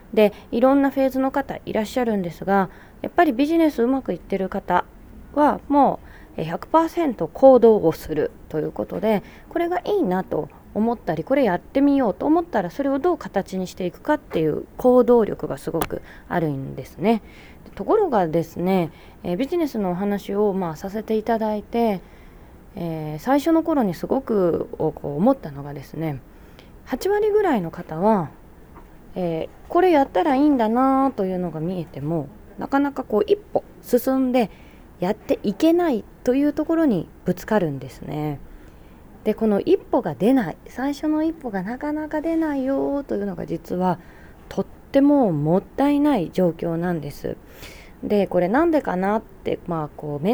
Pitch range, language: 175-275 Hz, Japanese